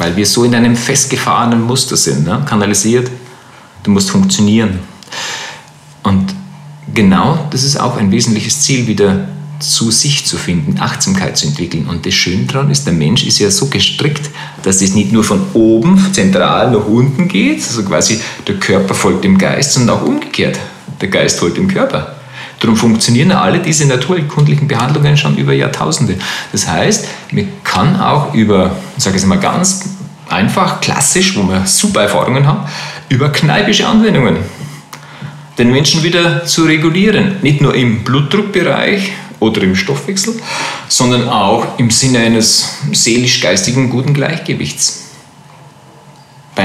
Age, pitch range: 40-59, 115-180 Hz